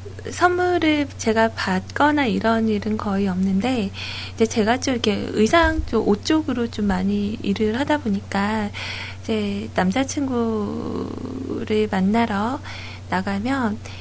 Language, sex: Korean, female